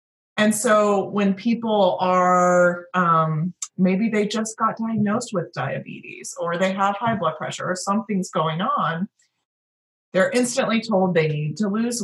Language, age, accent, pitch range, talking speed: English, 30-49, American, 165-205 Hz, 150 wpm